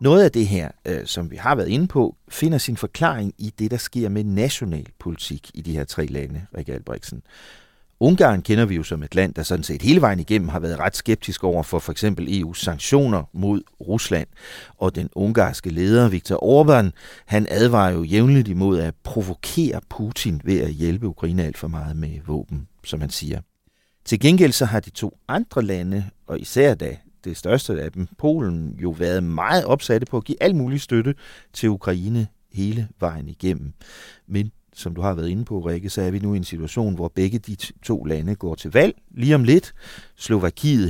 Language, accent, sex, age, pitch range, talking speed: Danish, native, male, 40-59, 85-115 Hz, 200 wpm